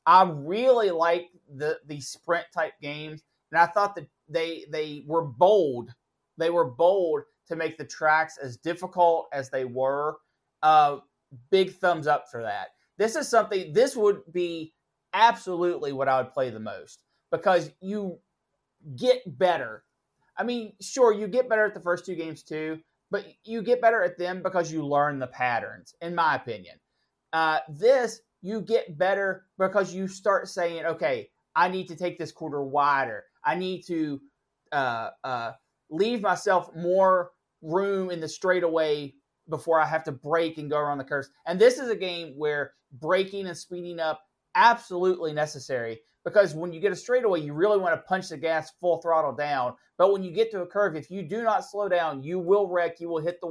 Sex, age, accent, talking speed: male, 30-49, American, 185 wpm